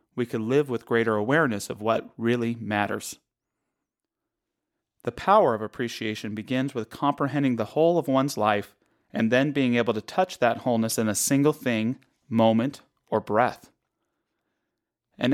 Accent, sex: American, male